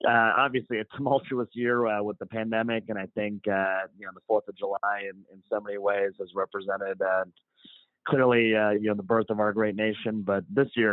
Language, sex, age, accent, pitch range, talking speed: English, male, 30-49, American, 95-110 Hz, 220 wpm